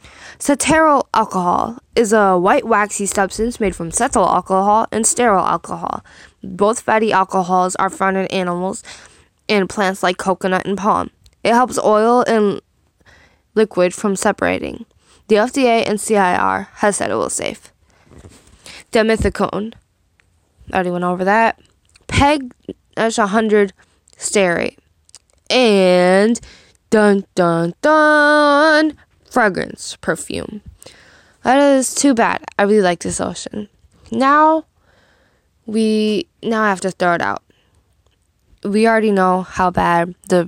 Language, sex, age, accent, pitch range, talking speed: English, female, 10-29, American, 180-235 Hz, 115 wpm